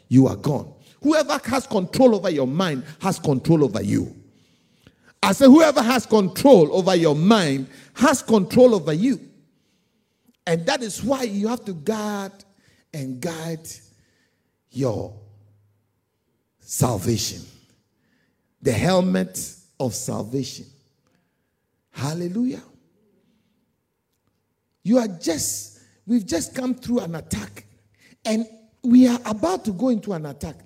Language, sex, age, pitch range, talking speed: English, male, 50-69, 140-220 Hz, 115 wpm